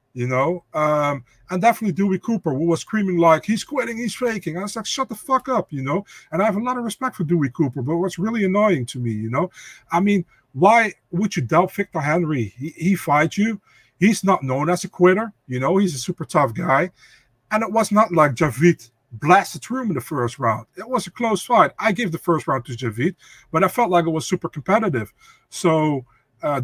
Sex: male